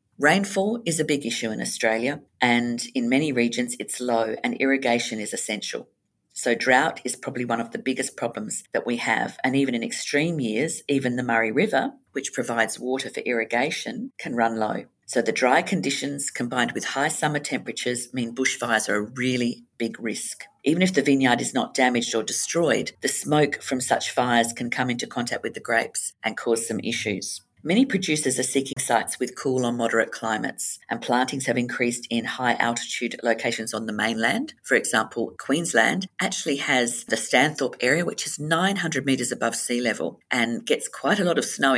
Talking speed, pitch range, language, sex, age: 185 wpm, 115-140 Hz, English, female, 50-69